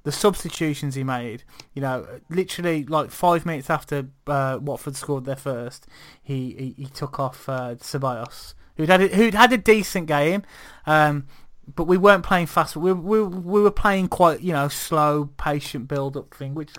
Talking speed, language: 180 wpm, English